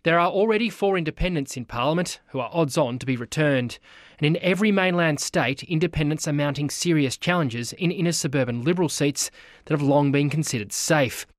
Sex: male